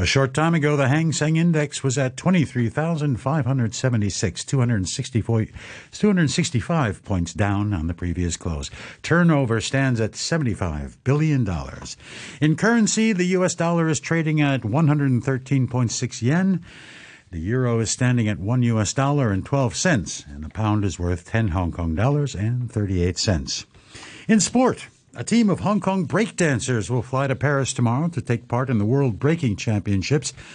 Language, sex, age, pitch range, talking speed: English, male, 60-79, 110-155 Hz, 150 wpm